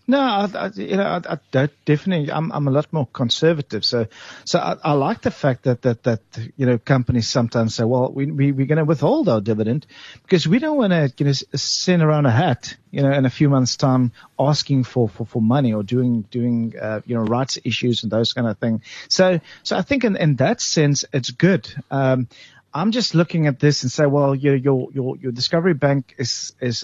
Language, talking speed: English, 225 wpm